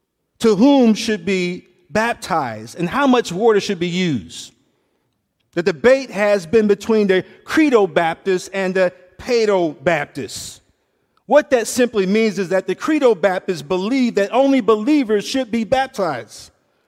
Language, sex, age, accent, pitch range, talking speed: English, male, 50-69, American, 190-255 Hz, 135 wpm